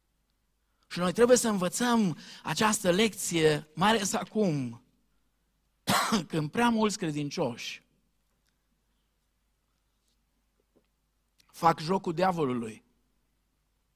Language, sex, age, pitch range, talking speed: Romanian, male, 50-69, 135-185 Hz, 75 wpm